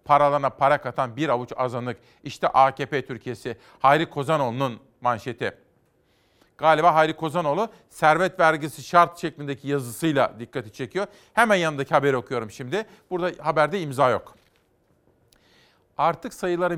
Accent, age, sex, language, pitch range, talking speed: native, 40-59, male, Turkish, 130-165 Hz, 120 wpm